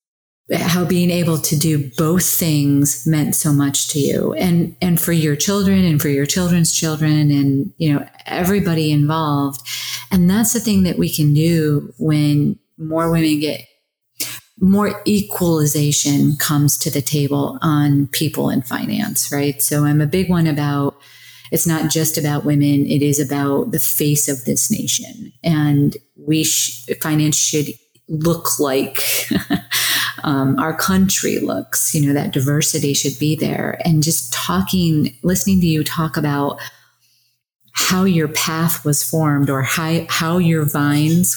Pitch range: 145-175 Hz